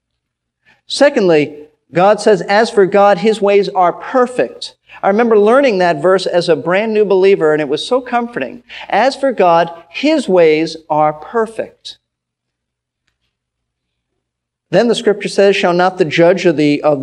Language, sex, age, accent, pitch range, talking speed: English, male, 50-69, American, 160-220 Hz, 150 wpm